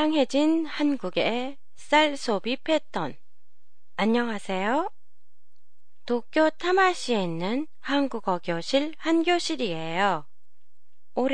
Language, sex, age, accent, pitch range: Japanese, female, 20-39, Korean, 190-280 Hz